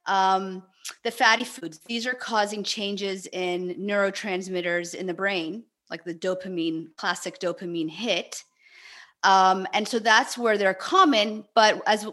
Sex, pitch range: female, 190-255 Hz